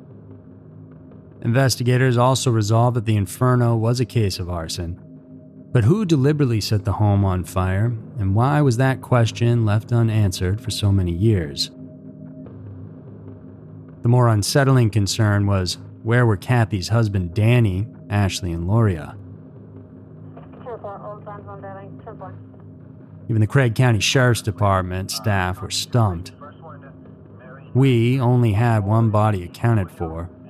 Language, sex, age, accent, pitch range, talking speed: English, male, 30-49, American, 95-120 Hz, 115 wpm